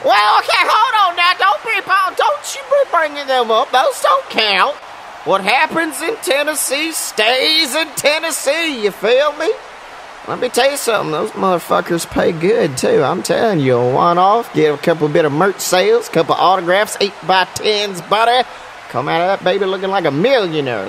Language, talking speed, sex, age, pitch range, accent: English, 180 wpm, male, 40-59, 195-295 Hz, American